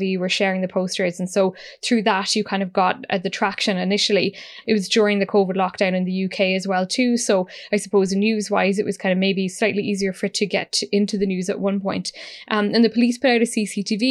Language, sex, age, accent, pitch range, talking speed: English, female, 10-29, Irish, 195-230 Hz, 245 wpm